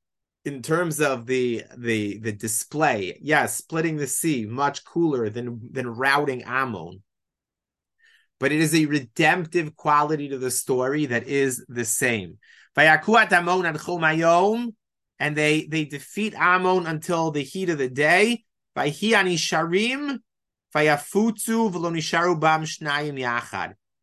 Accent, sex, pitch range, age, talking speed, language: American, male, 125-165 Hz, 30-49, 105 wpm, English